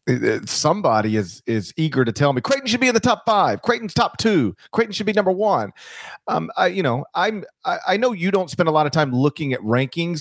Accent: American